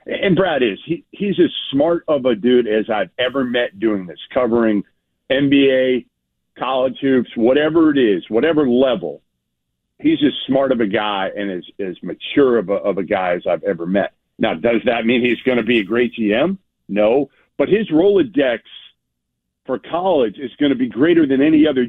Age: 50-69